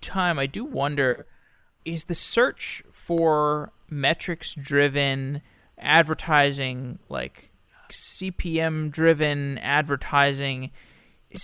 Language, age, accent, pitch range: English, 20-39, American, 135-180 Hz